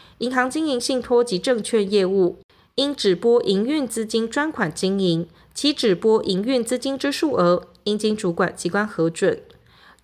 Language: Chinese